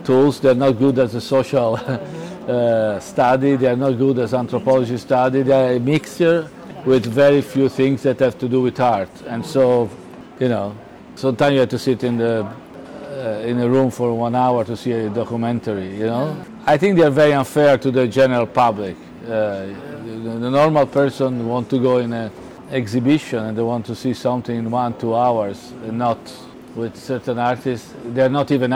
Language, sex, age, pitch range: Chinese, male, 50-69, 115-135 Hz